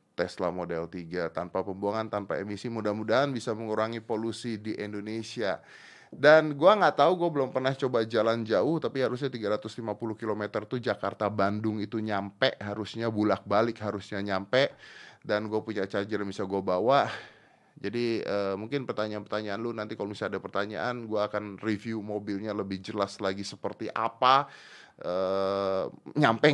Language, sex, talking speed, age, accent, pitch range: Indonesian, male, 140 wpm, 30-49, native, 100-135 Hz